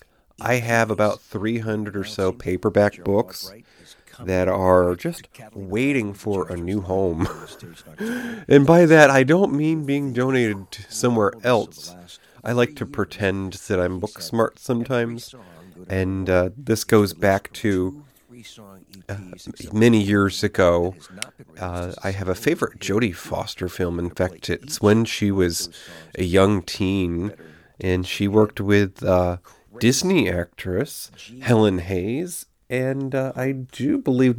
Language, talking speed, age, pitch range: English, 135 wpm, 30-49, 95-130 Hz